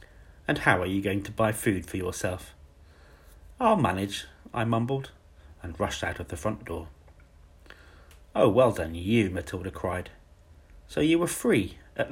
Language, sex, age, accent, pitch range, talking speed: English, male, 40-59, British, 80-110 Hz, 160 wpm